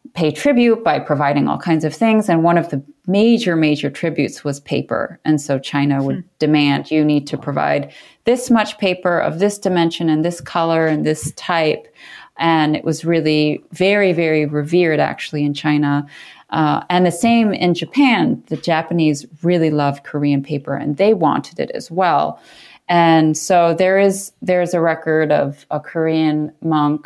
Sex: female